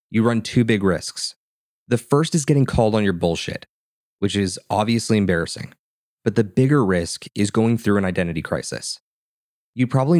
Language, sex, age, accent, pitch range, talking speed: English, male, 20-39, American, 95-125 Hz, 170 wpm